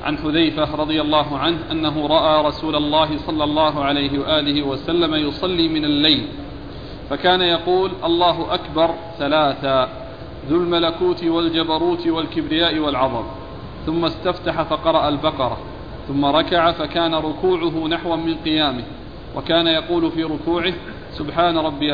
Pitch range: 155-175 Hz